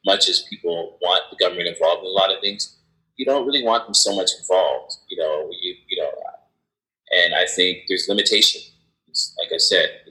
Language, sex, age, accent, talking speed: English, male, 30-49, American, 200 wpm